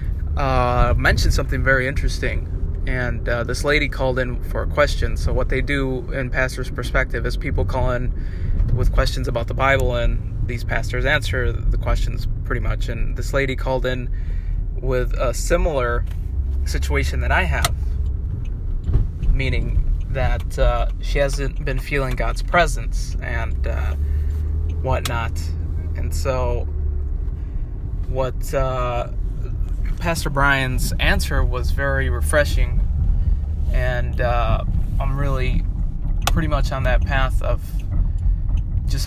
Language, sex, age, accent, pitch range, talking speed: English, male, 20-39, American, 80-125 Hz, 125 wpm